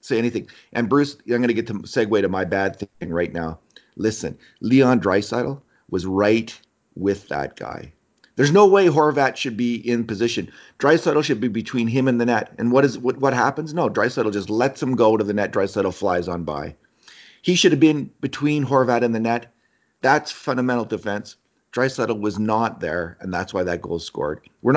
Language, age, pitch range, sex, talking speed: English, 40-59, 95-130 Hz, male, 200 wpm